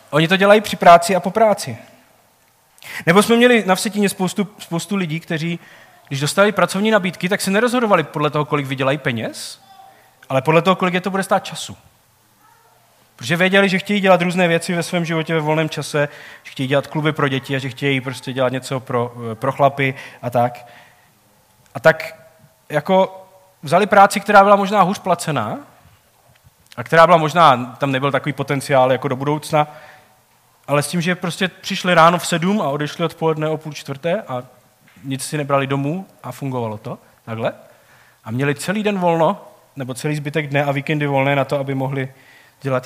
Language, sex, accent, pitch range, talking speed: Czech, male, native, 135-185 Hz, 180 wpm